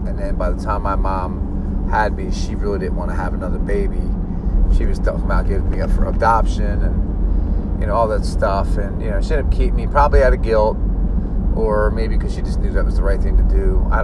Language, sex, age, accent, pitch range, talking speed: English, male, 30-49, American, 85-105 Hz, 250 wpm